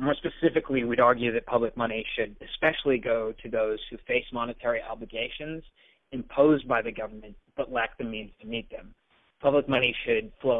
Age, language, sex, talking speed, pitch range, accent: 30-49, English, male, 175 wpm, 120-145 Hz, American